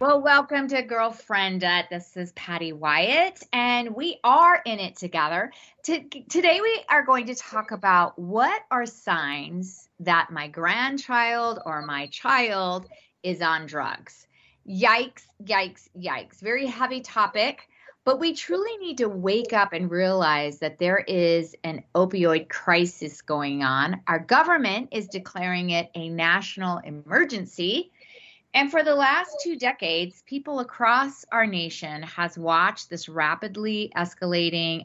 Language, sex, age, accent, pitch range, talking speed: English, female, 30-49, American, 170-245 Hz, 140 wpm